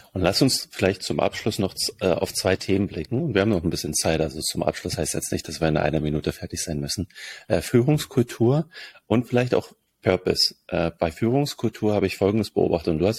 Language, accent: German, German